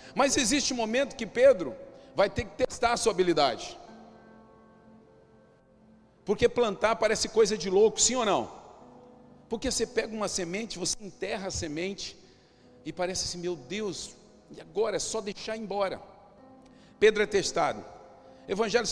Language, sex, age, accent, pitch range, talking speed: Portuguese, male, 50-69, Brazilian, 155-215 Hz, 145 wpm